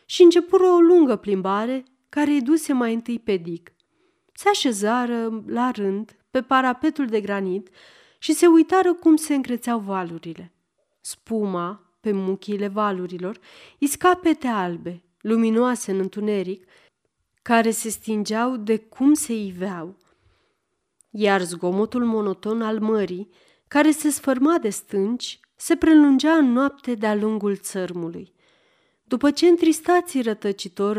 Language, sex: Romanian, female